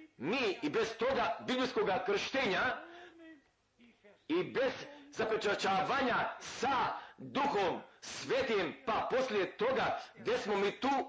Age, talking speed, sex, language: 50-69, 105 wpm, male, Croatian